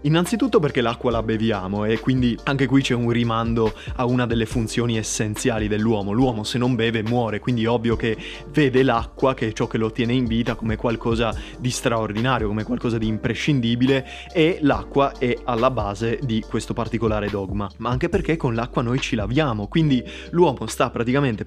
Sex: male